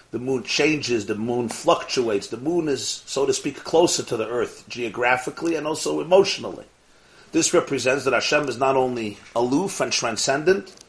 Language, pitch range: English, 120-170 Hz